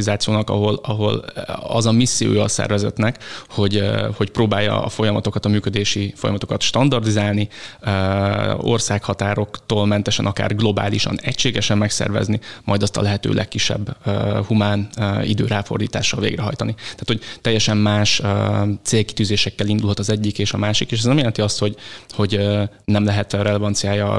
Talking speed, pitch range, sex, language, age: 135 wpm, 100-110 Hz, male, Hungarian, 20-39